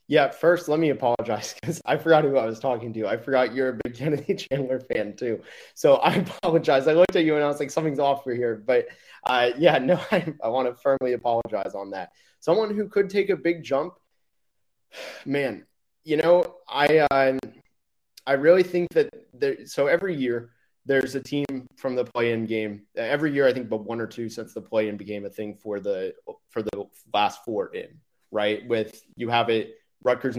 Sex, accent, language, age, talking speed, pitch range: male, American, English, 30-49, 205 wpm, 115-155 Hz